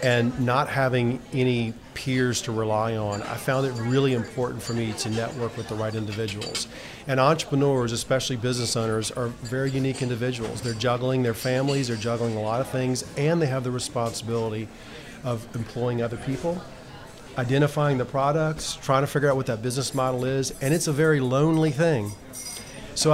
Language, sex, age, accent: English, male, 40-59, American